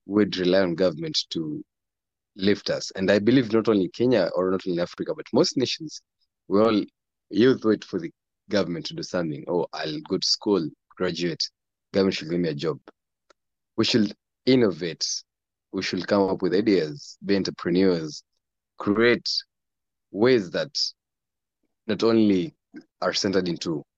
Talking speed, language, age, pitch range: 155 wpm, English, 30-49, 90-115 Hz